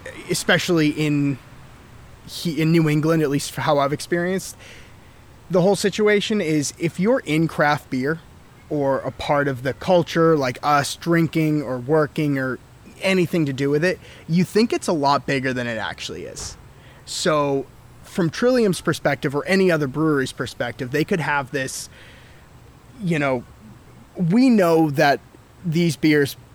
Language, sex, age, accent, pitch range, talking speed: English, male, 20-39, American, 130-170 Hz, 150 wpm